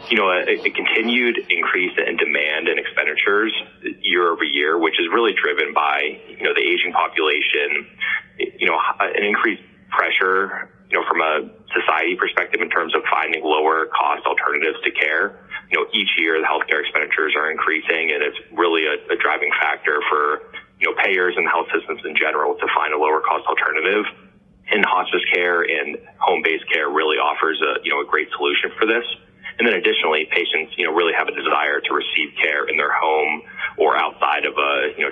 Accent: American